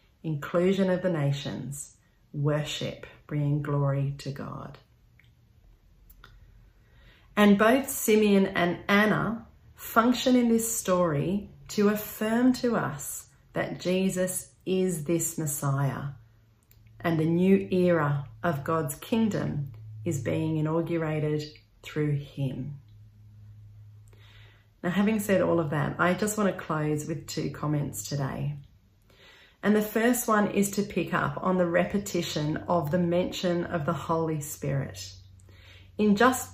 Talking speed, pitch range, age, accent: 120 wpm, 140-195 Hz, 40-59, Australian